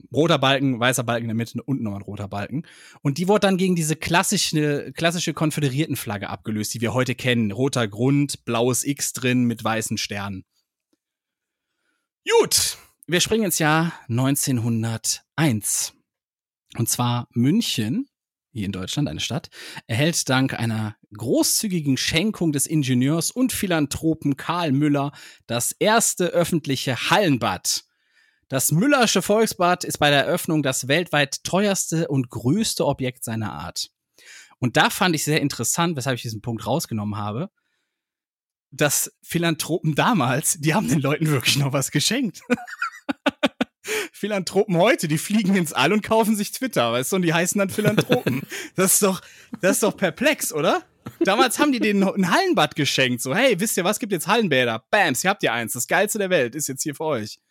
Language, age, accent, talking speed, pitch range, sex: German, 30-49, German, 165 wpm, 125-190 Hz, male